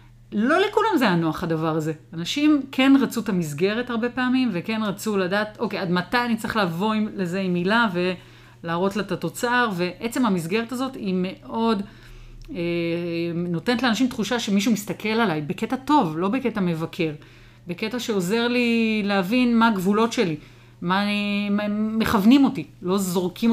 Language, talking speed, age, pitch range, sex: Hebrew, 160 wpm, 40-59, 170-225 Hz, female